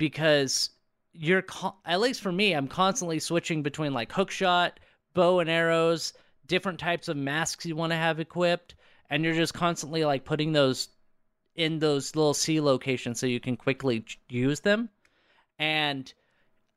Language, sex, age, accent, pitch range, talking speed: English, male, 30-49, American, 130-170 Hz, 155 wpm